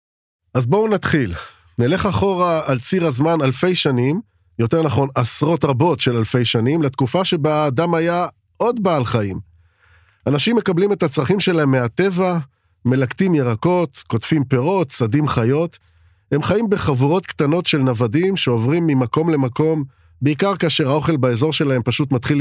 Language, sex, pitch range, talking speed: Hebrew, male, 125-170 Hz, 140 wpm